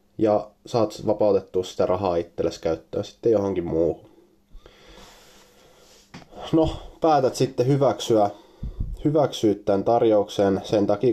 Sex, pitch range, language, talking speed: male, 95-110 Hz, Finnish, 100 wpm